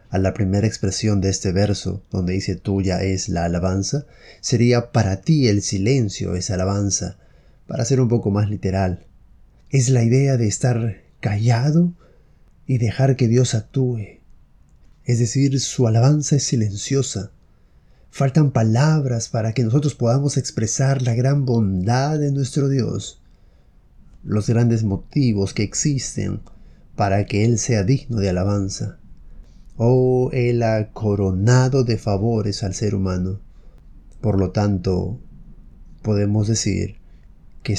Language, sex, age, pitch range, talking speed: Spanish, male, 30-49, 100-130 Hz, 130 wpm